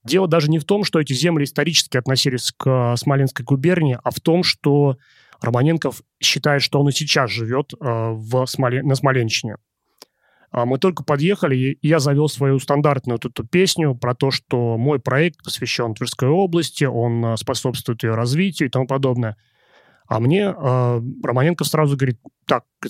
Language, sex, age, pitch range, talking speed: Russian, male, 30-49, 125-155 Hz, 160 wpm